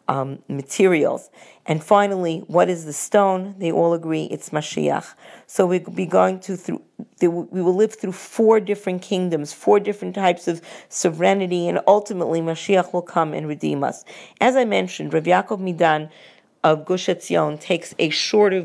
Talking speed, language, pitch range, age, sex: 165 wpm, English, 160-195 Hz, 40-59, female